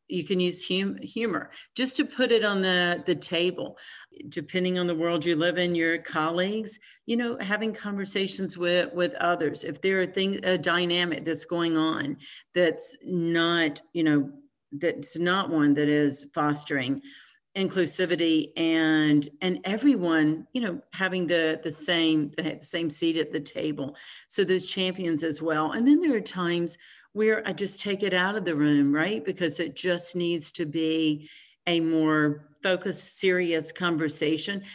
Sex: female